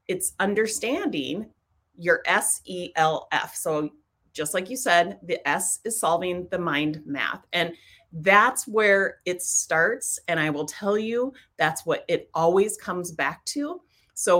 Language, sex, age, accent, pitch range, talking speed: English, female, 30-49, American, 165-210 Hz, 155 wpm